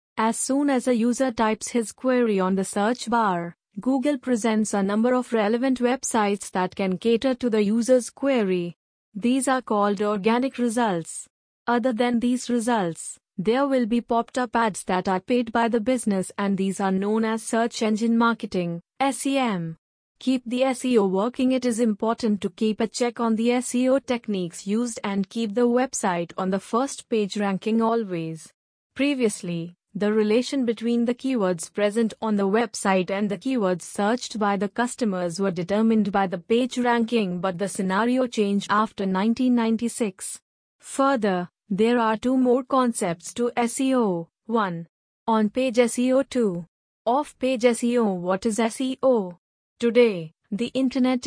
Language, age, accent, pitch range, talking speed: English, 30-49, Indian, 200-245 Hz, 155 wpm